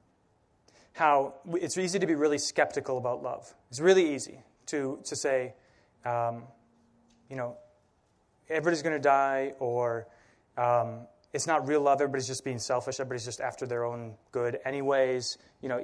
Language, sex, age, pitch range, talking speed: English, male, 20-39, 120-150 Hz, 155 wpm